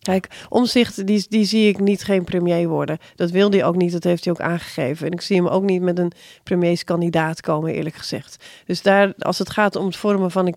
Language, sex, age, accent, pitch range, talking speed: Dutch, female, 40-59, Dutch, 175-195 Hz, 240 wpm